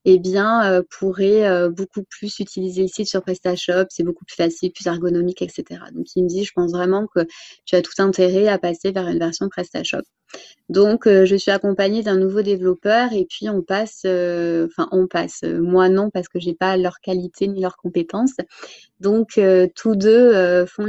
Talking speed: 205 wpm